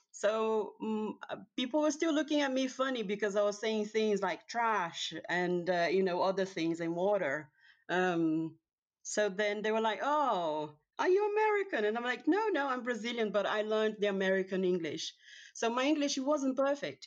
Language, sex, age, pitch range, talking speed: English, female, 30-49, 185-225 Hz, 185 wpm